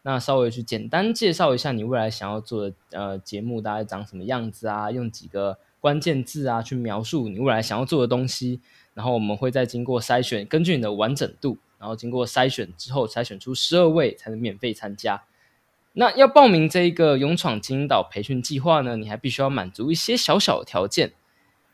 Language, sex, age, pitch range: Chinese, male, 20-39, 115-155 Hz